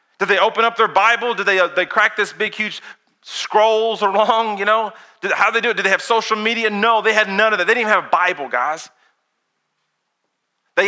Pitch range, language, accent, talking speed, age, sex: 145-205 Hz, English, American, 225 wpm, 40-59, male